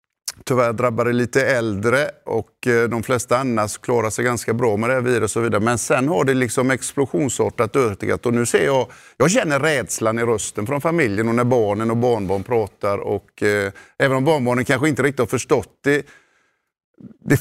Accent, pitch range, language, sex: native, 115-145 Hz, Swedish, male